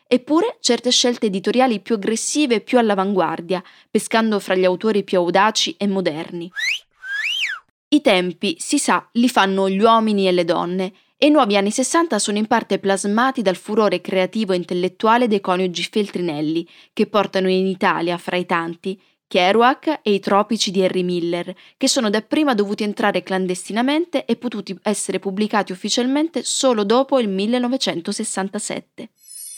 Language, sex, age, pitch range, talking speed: Italian, female, 20-39, 185-245 Hz, 150 wpm